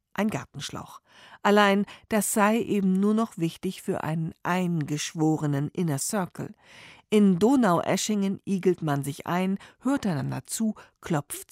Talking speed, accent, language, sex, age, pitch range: 125 wpm, German, German, female, 50-69, 155-200 Hz